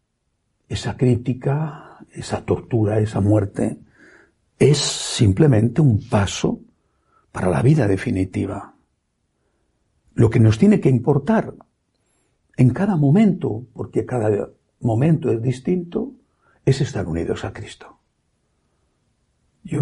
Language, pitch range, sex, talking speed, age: Spanish, 105-155 Hz, male, 105 wpm, 60-79